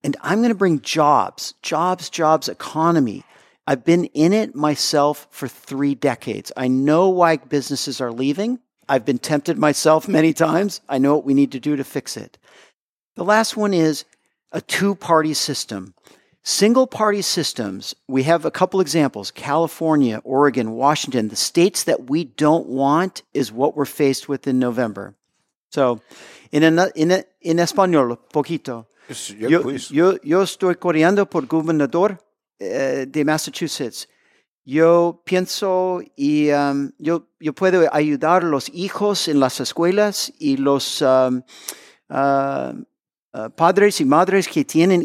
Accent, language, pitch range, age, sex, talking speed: American, English, 140-180 Hz, 50-69, male, 150 wpm